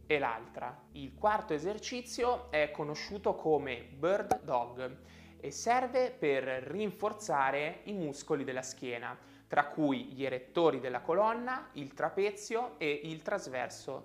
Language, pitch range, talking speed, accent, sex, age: Italian, 130-205 Hz, 120 wpm, native, male, 20-39